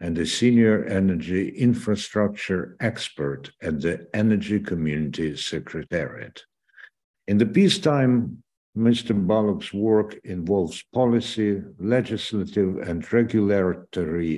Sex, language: male, Ukrainian